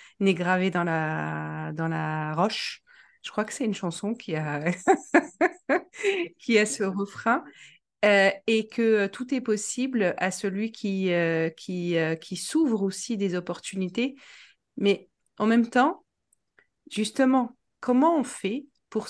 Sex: female